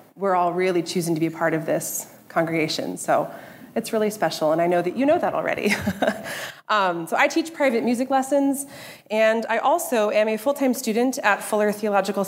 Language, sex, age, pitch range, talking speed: English, female, 30-49, 180-235 Hz, 195 wpm